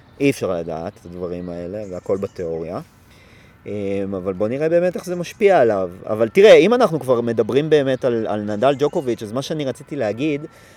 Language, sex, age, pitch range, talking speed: Hebrew, male, 30-49, 115-165 Hz, 180 wpm